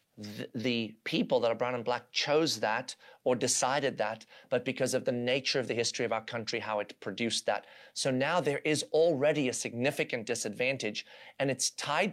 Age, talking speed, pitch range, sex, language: 30-49, 190 wpm, 120-155 Hz, male, English